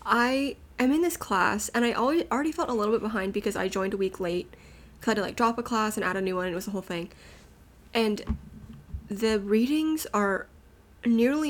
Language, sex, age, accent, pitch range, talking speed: English, female, 20-39, American, 210-265 Hz, 230 wpm